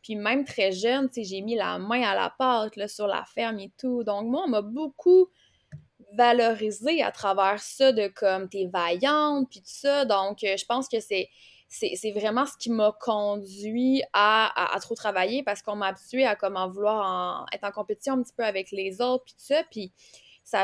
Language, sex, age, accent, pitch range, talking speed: French, female, 20-39, Canadian, 195-250 Hz, 215 wpm